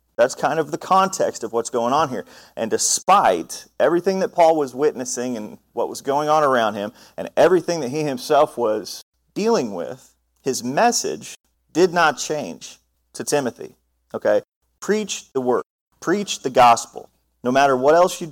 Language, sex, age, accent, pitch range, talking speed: English, male, 30-49, American, 120-160 Hz, 165 wpm